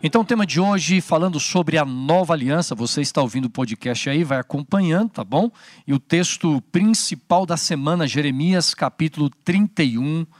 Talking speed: 165 wpm